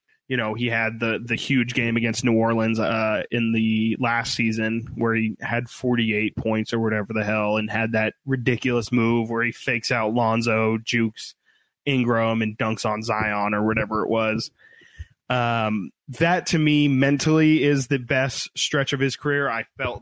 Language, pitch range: English, 115-140 Hz